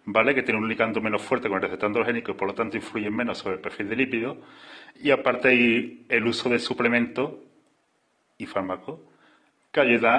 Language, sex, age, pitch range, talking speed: Spanish, male, 30-49, 105-125 Hz, 195 wpm